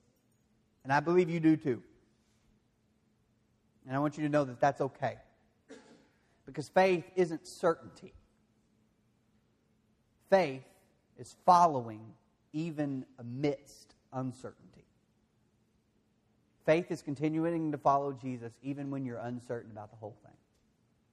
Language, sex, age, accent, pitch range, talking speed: English, male, 30-49, American, 115-160 Hz, 110 wpm